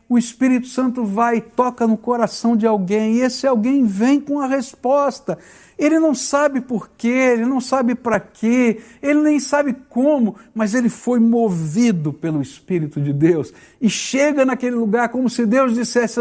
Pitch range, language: 155-235 Hz, Portuguese